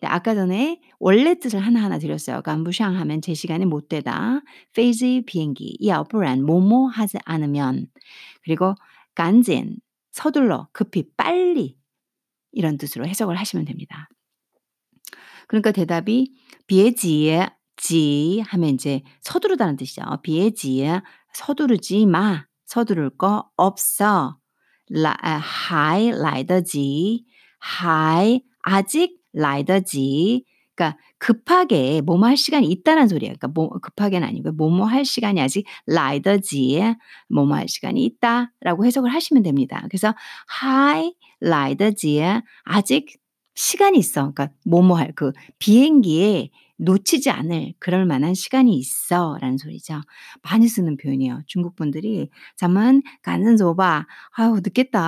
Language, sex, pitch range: Korean, female, 160-245 Hz